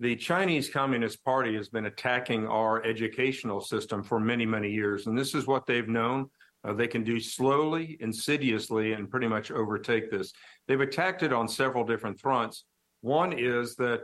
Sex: male